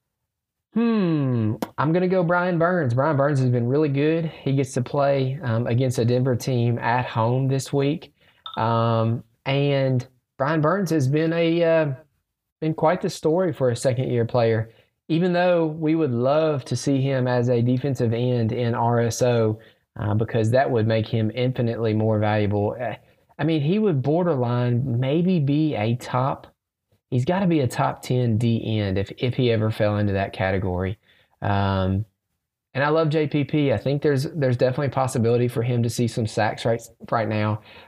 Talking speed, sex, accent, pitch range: 175 wpm, male, American, 110-140 Hz